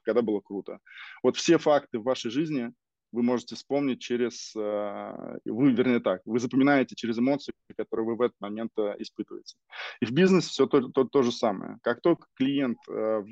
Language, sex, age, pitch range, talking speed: Russian, male, 20-39, 110-135 Hz, 175 wpm